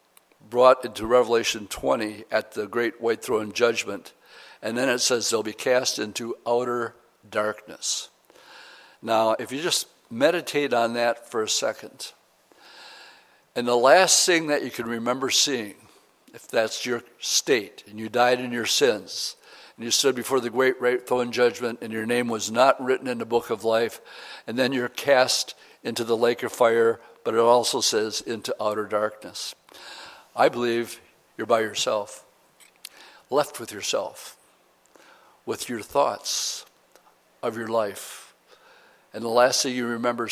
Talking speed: 155 wpm